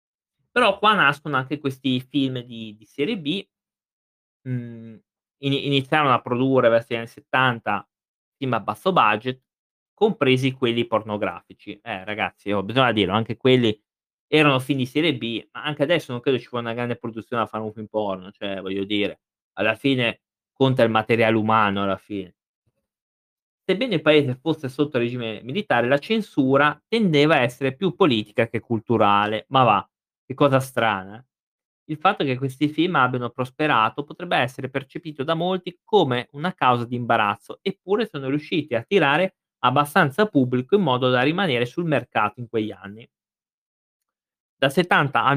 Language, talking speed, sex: Italian, 155 wpm, male